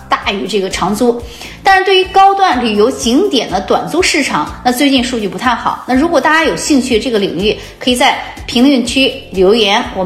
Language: Chinese